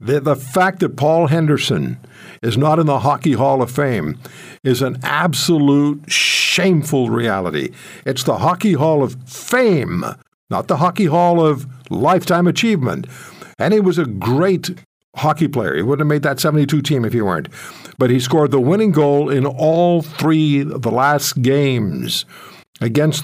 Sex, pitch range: male, 125-160 Hz